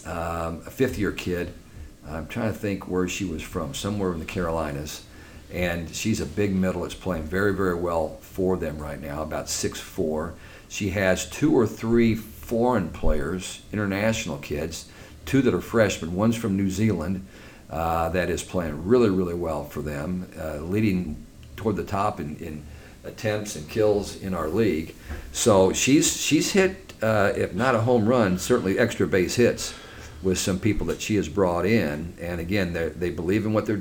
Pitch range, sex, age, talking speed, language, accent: 80-105 Hz, male, 50-69, 180 wpm, English, American